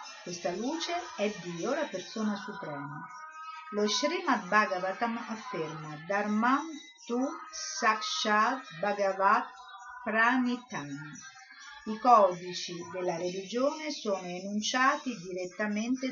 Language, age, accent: Italian, 50-69, native